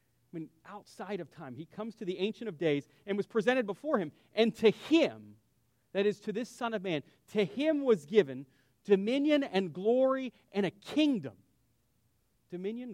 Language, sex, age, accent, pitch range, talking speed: English, male, 40-59, American, 170-230 Hz, 175 wpm